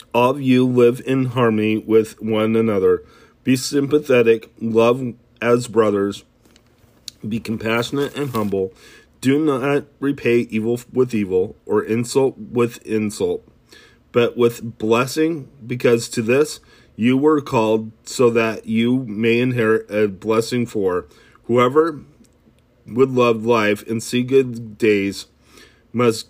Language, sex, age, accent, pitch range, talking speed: English, male, 40-59, American, 110-130 Hz, 120 wpm